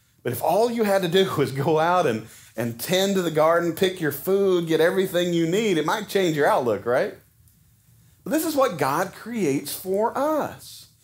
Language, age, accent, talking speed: English, 40-59, American, 200 wpm